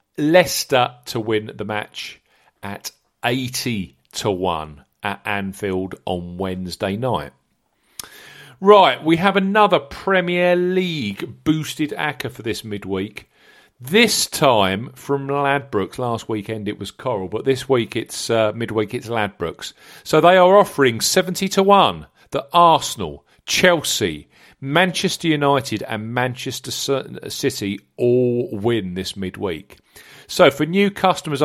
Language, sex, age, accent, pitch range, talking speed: English, male, 40-59, British, 105-155 Hz, 125 wpm